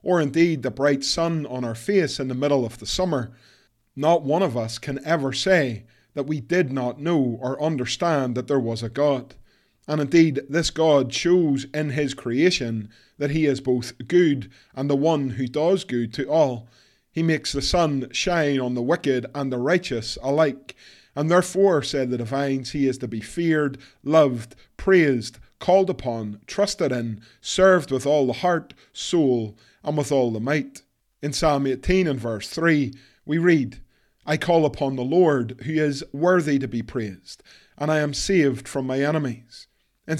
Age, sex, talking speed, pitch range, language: 20-39, male, 180 wpm, 125-160 Hz, English